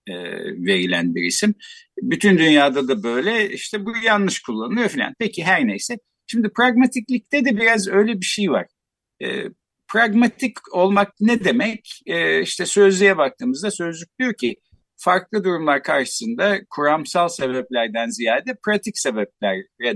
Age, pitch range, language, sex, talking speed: 60-79, 140-225 Hz, Turkish, male, 130 wpm